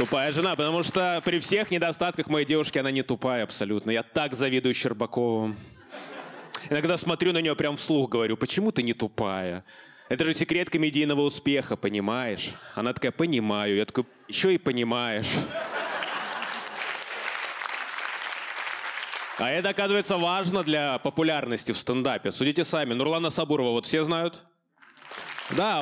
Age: 20-39